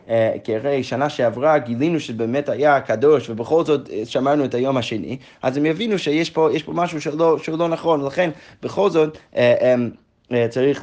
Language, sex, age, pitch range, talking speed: Hebrew, male, 20-39, 120-160 Hz, 150 wpm